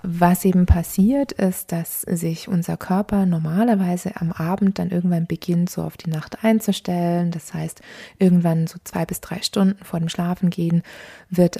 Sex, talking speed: female, 165 wpm